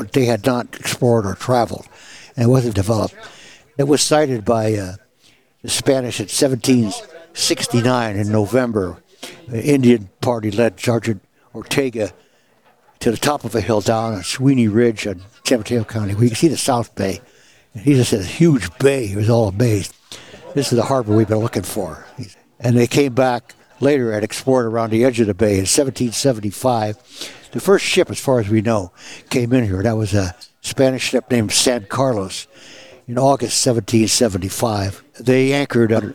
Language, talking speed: English, 175 wpm